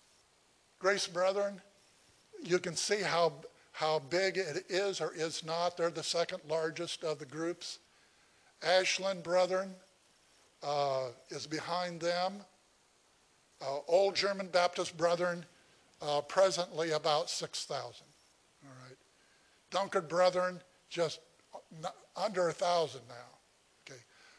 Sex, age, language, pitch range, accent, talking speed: male, 50-69, English, 160-200 Hz, American, 110 wpm